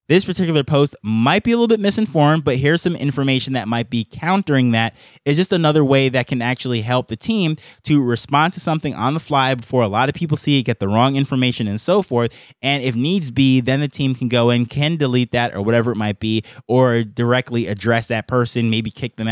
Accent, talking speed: American, 235 wpm